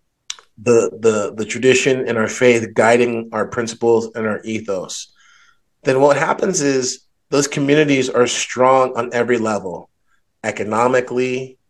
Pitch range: 120-140 Hz